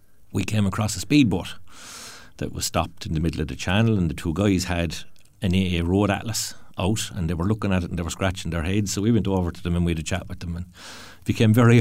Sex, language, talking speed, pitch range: male, English, 270 wpm, 95-115 Hz